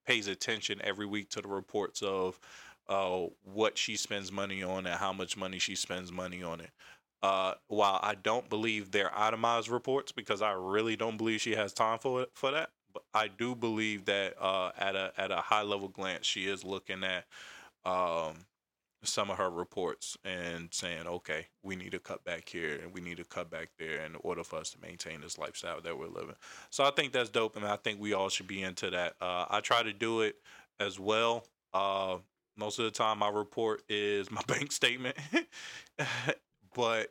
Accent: American